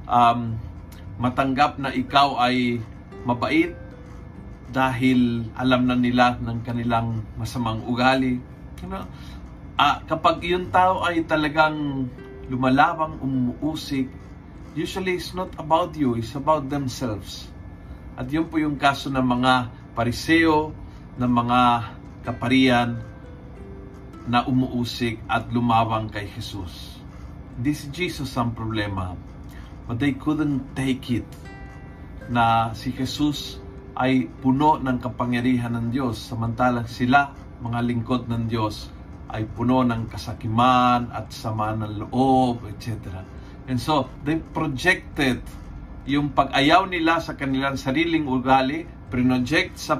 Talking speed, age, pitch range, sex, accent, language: 115 wpm, 40-59, 110-135 Hz, male, native, Filipino